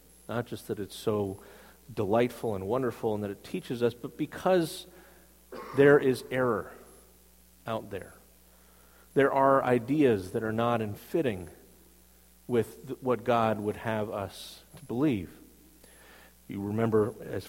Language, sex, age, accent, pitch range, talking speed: English, male, 50-69, American, 100-135 Hz, 135 wpm